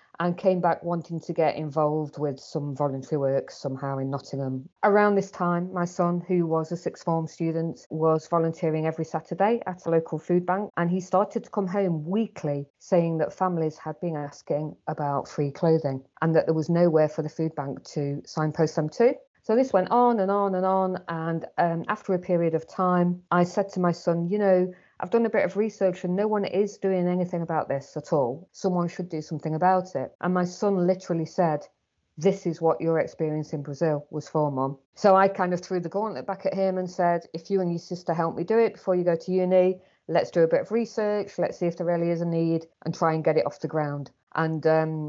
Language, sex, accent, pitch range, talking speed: English, female, British, 155-185 Hz, 230 wpm